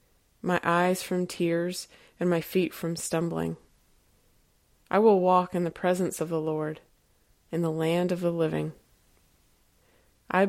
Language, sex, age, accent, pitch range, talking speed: English, female, 20-39, American, 160-185 Hz, 145 wpm